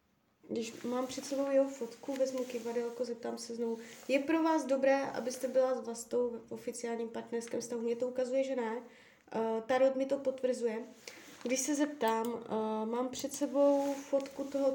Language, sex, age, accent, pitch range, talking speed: Czech, female, 20-39, native, 230-265 Hz, 170 wpm